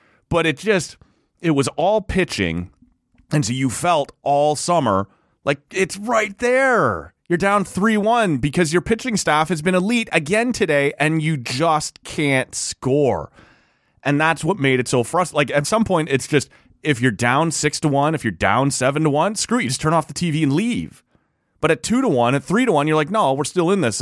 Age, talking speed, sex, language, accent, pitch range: 30-49, 190 wpm, male, English, American, 110-165 Hz